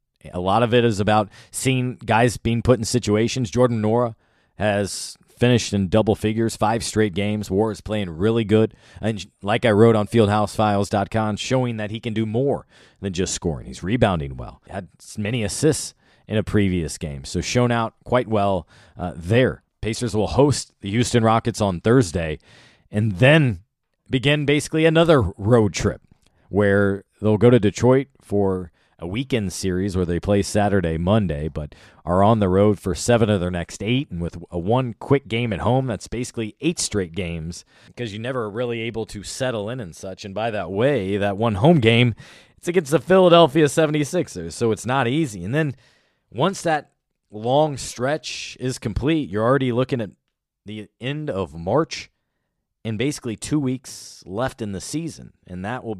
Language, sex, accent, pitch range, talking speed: English, male, American, 100-125 Hz, 175 wpm